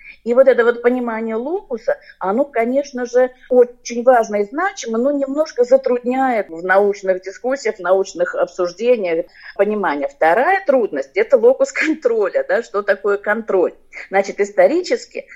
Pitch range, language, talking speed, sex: 200-295 Hz, Russian, 135 wpm, female